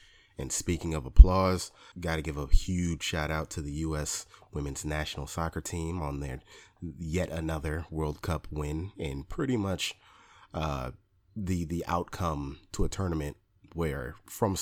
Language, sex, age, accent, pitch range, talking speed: English, male, 30-49, American, 75-90 Hz, 150 wpm